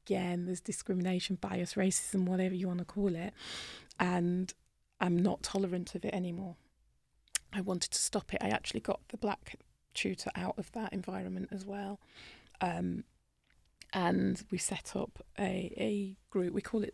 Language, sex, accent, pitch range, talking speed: English, female, British, 180-200 Hz, 165 wpm